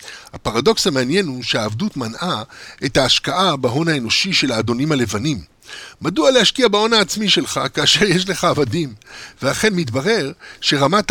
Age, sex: 60-79, male